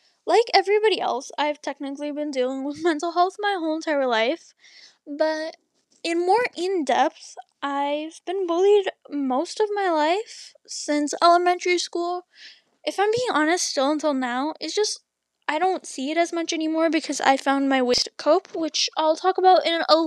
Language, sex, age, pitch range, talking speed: English, female, 10-29, 285-360 Hz, 170 wpm